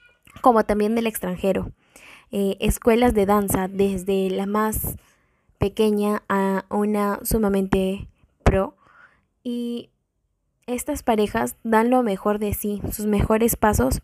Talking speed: 115 wpm